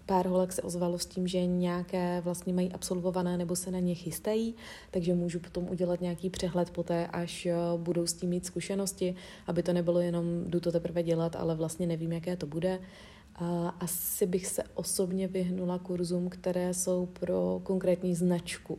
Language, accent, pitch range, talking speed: Czech, native, 165-180 Hz, 175 wpm